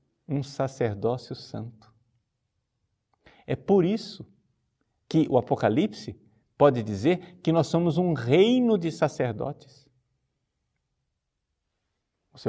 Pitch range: 110-175 Hz